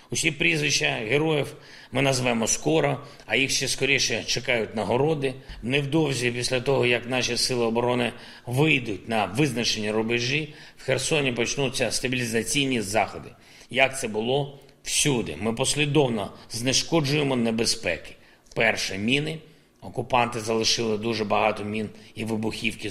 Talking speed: 120 wpm